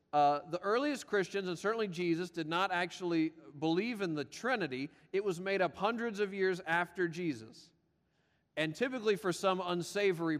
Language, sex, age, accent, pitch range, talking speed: English, male, 40-59, American, 165-205 Hz, 160 wpm